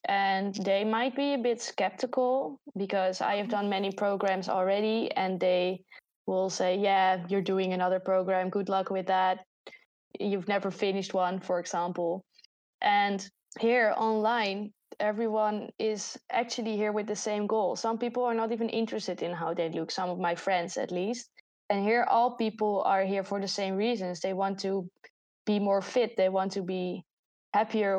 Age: 20-39